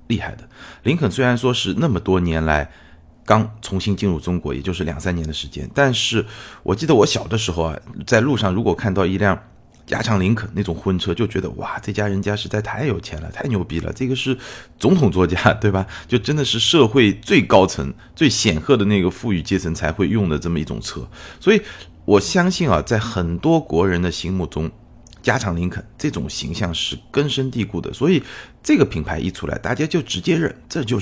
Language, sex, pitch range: Chinese, male, 90-115 Hz